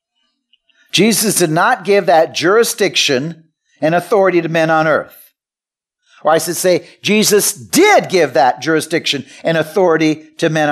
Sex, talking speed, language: male, 140 wpm, English